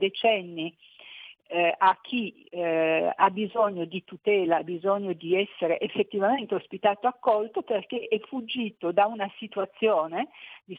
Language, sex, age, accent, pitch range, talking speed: Italian, female, 50-69, native, 185-225 Hz, 130 wpm